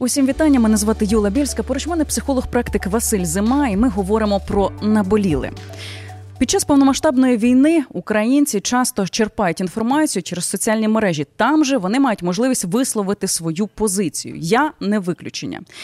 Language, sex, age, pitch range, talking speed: Ukrainian, female, 20-39, 175-235 Hz, 150 wpm